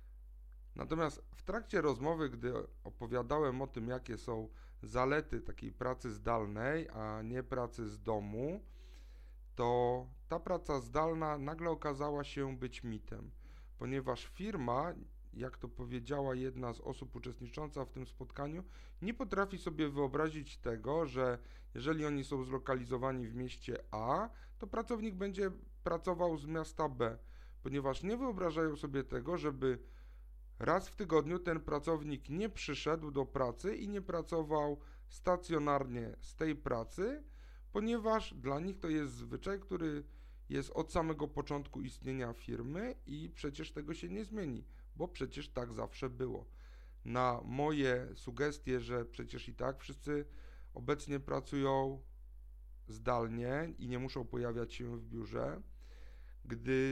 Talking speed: 130 wpm